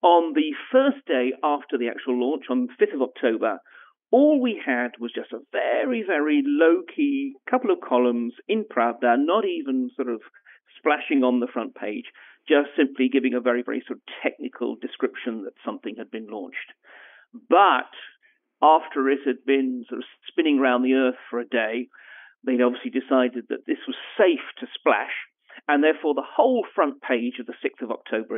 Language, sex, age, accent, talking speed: English, male, 50-69, British, 180 wpm